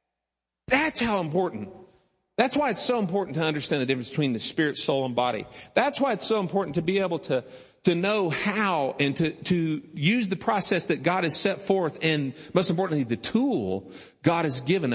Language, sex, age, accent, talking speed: English, male, 50-69, American, 195 wpm